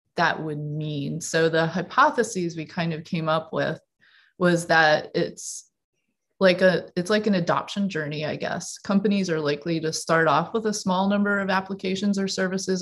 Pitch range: 155-190 Hz